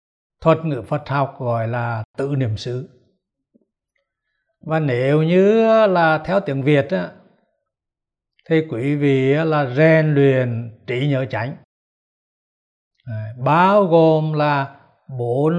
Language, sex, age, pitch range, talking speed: Vietnamese, male, 60-79, 130-175 Hz, 110 wpm